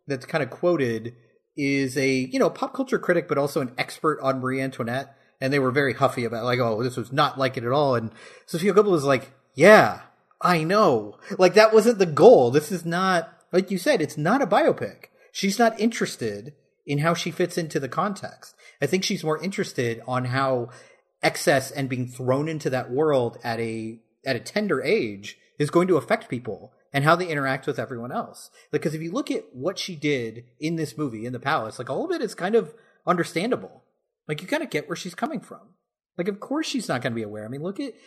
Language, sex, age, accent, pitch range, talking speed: English, male, 30-49, American, 130-185 Hz, 230 wpm